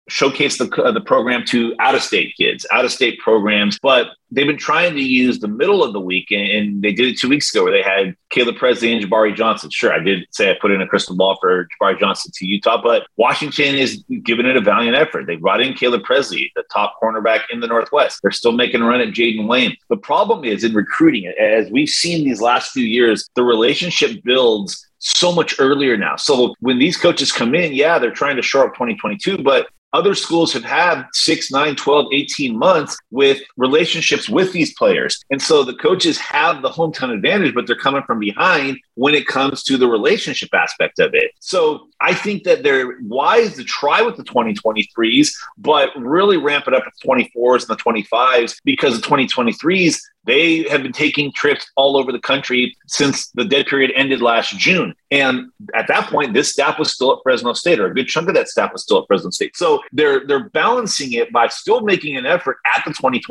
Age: 30-49